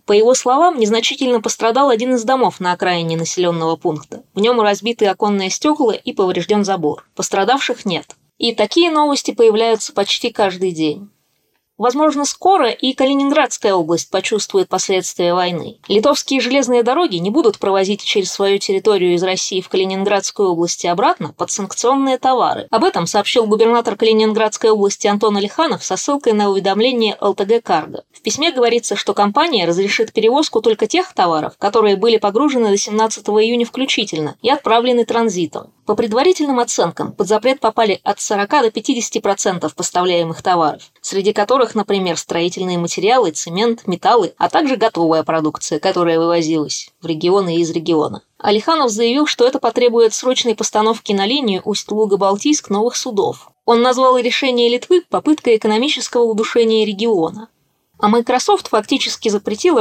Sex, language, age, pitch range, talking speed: female, Russian, 20-39, 195-245 Hz, 145 wpm